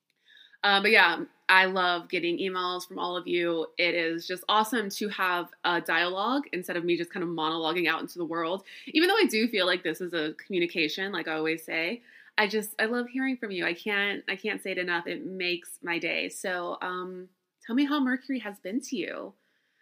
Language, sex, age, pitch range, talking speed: English, female, 20-39, 170-220 Hz, 220 wpm